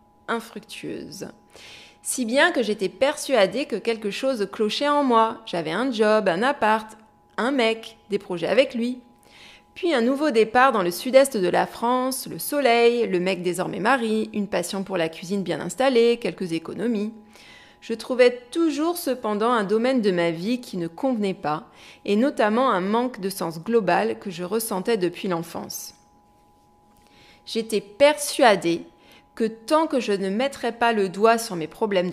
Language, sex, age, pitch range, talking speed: French, female, 30-49, 190-250 Hz, 165 wpm